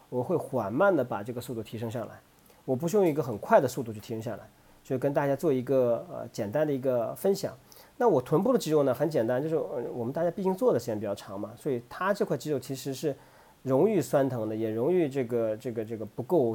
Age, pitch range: 40-59, 115-165 Hz